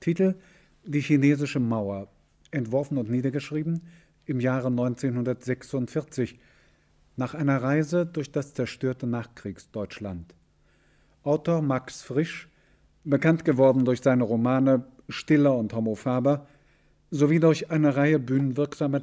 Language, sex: German, male